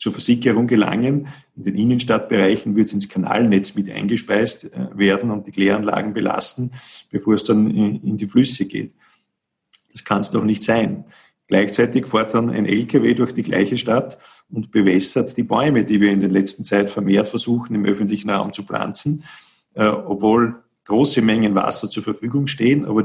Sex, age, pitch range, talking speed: male, 50-69, 105-125 Hz, 170 wpm